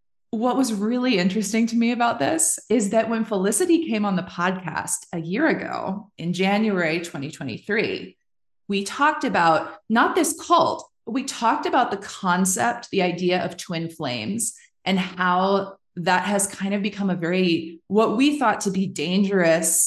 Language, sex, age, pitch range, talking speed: English, female, 30-49, 175-235 Hz, 160 wpm